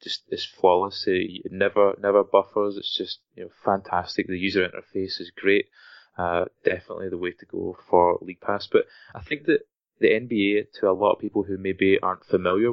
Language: English